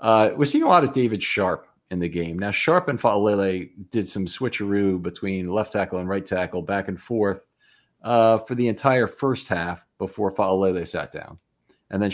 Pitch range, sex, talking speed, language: 95-115 Hz, male, 195 wpm, English